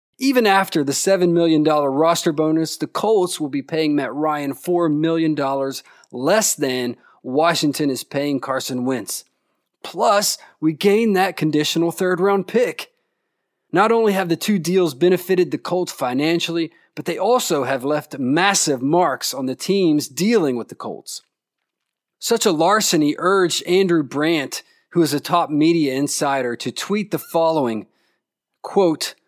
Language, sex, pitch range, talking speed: English, male, 140-180 Hz, 145 wpm